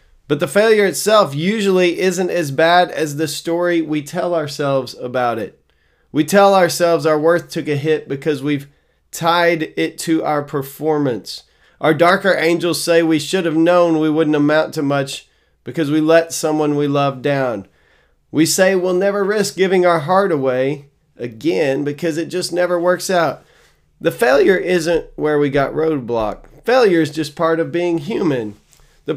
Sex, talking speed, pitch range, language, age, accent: male, 170 wpm, 140-175 Hz, English, 30-49, American